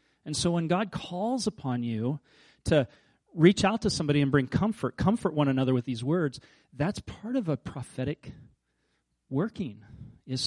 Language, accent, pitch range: English, American, 120-150 Hz